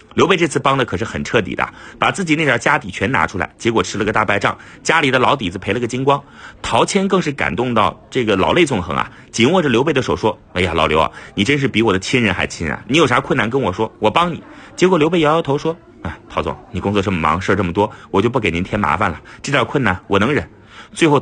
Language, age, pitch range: Chinese, 30-49, 105-160 Hz